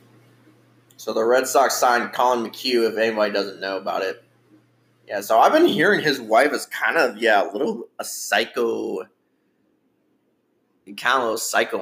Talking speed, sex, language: 160 wpm, male, English